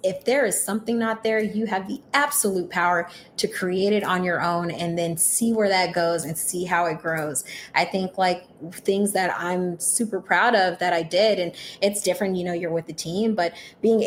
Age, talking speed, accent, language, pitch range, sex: 20-39, 215 wpm, American, English, 175-210 Hz, female